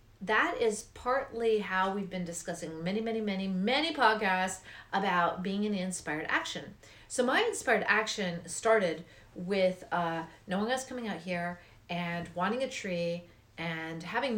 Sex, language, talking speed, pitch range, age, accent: female, English, 145 wpm, 170-245 Hz, 40-59, American